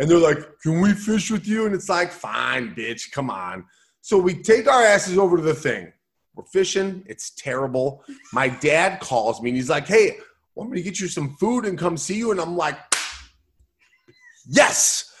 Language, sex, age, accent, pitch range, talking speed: English, male, 30-49, American, 140-230 Hz, 200 wpm